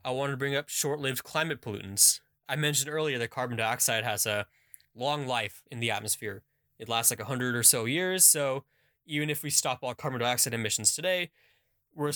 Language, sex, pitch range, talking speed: English, male, 105-135 Hz, 190 wpm